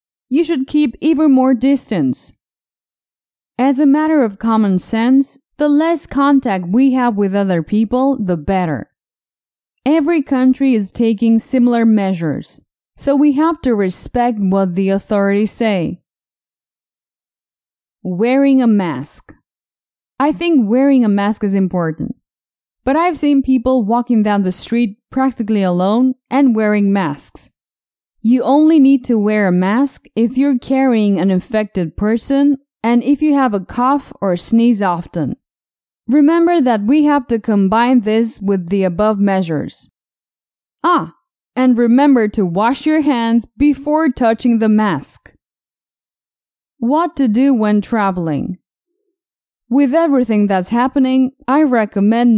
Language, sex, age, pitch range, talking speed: English, female, 10-29, 205-275 Hz, 130 wpm